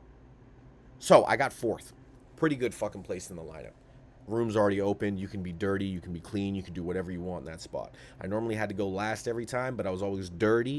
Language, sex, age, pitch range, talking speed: English, male, 30-49, 95-120 Hz, 245 wpm